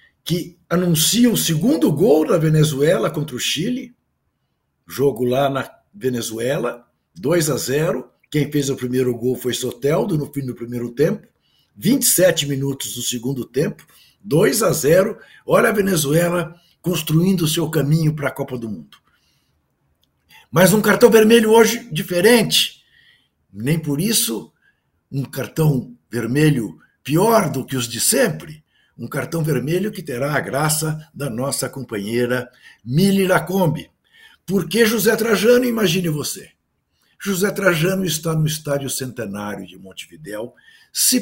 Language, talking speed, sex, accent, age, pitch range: Portuguese, 135 wpm, male, Brazilian, 60-79, 125-185 Hz